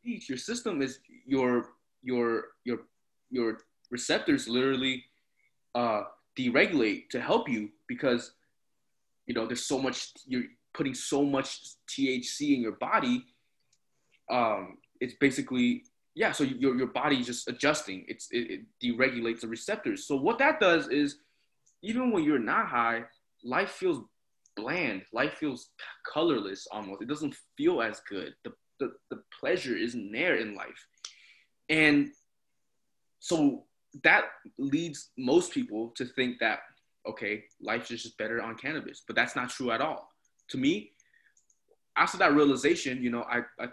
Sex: male